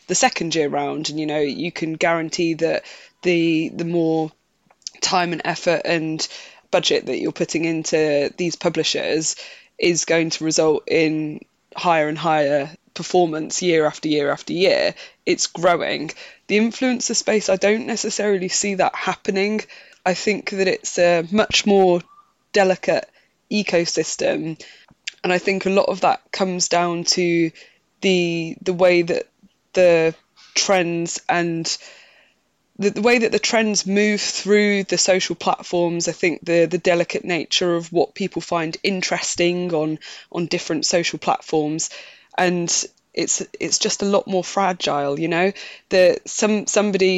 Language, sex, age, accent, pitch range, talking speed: English, female, 20-39, British, 165-195 Hz, 150 wpm